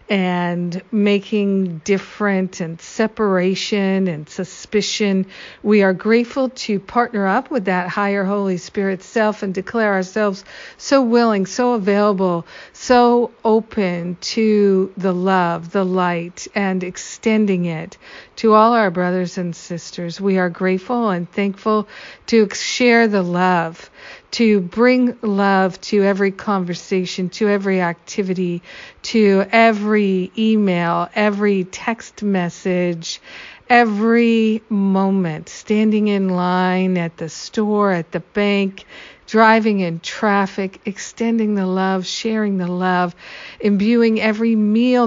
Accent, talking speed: American, 120 wpm